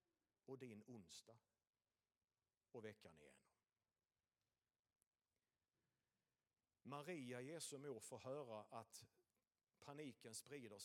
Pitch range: 125-160 Hz